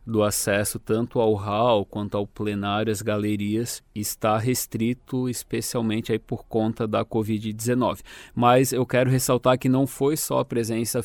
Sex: male